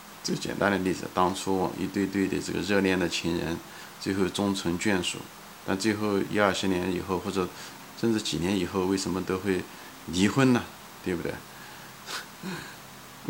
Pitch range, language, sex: 95-130 Hz, Chinese, male